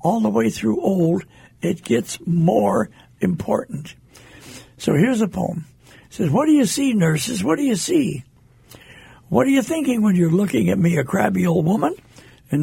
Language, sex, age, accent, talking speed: English, male, 60-79, American, 180 wpm